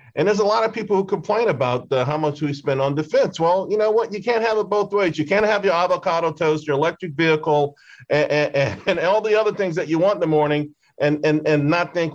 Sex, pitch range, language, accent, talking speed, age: male, 130-175 Hz, English, American, 250 wpm, 50-69